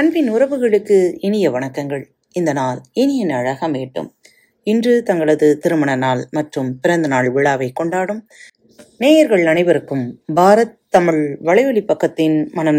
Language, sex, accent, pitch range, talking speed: Tamil, female, native, 150-225 Hz, 115 wpm